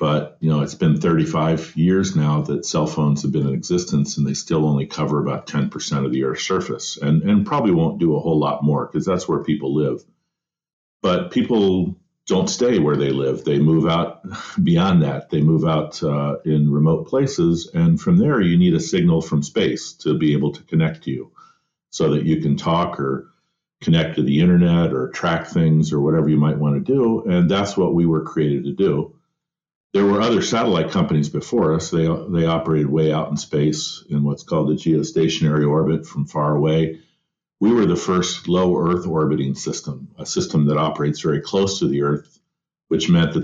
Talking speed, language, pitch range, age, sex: 205 wpm, English, 75-95 Hz, 50-69, male